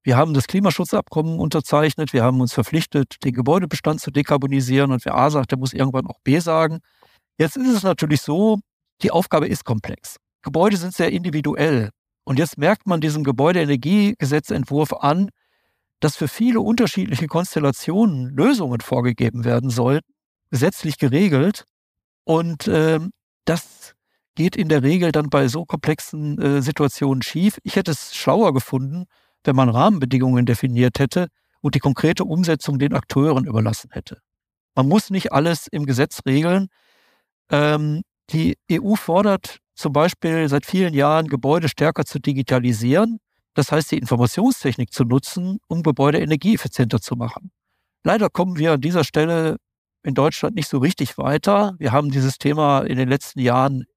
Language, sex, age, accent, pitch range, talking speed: German, male, 50-69, German, 135-170 Hz, 150 wpm